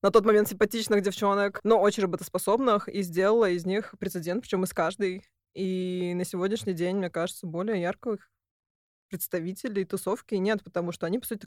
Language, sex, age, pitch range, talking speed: Russian, female, 20-39, 180-225 Hz, 165 wpm